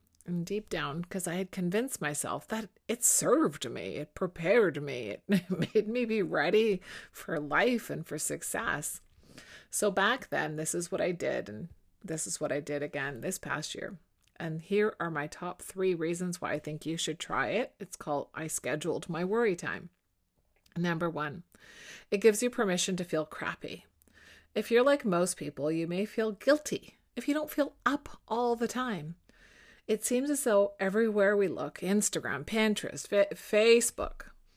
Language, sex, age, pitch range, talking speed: English, female, 30-49, 175-230 Hz, 175 wpm